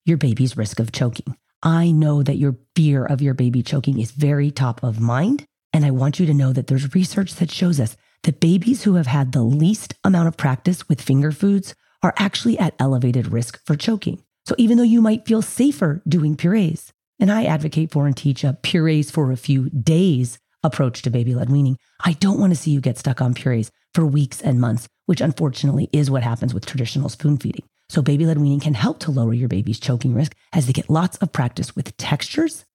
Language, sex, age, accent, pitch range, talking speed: English, female, 40-59, American, 130-175 Hz, 220 wpm